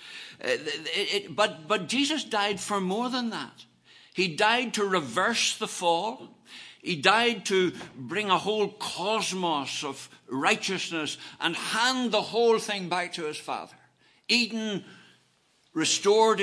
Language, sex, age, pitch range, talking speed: English, male, 60-79, 155-210 Hz, 135 wpm